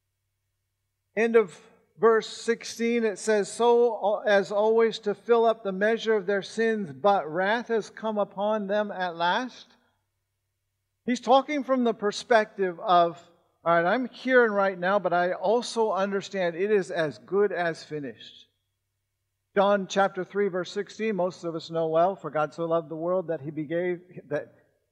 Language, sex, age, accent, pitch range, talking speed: English, male, 50-69, American, 165-225 Hz, 165 wpm